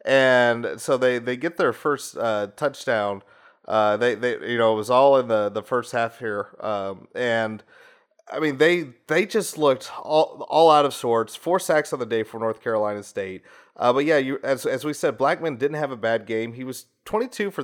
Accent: American